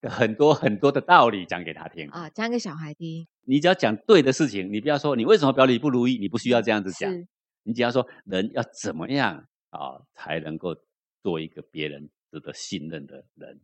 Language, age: Chinese, 50-69